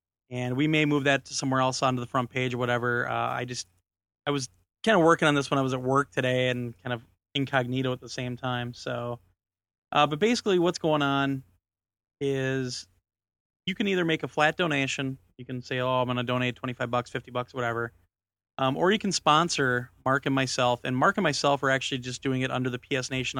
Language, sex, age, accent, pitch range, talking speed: English, male, 30-49, American, 120-145 Hz, 225 wpm